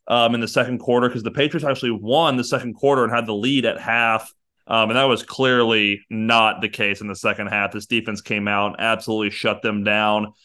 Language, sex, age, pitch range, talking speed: English, male, 30-49, 110-140 Hz, 230 wpm